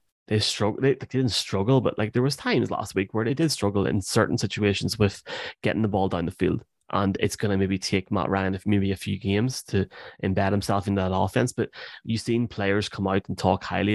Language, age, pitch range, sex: English, 20-39, 95-110 Hz, male